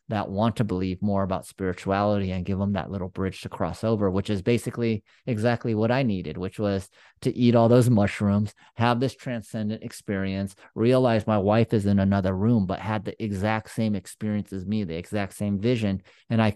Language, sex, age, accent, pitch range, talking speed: English, male, 30-49, American, 95-110 Hz, 200 wpm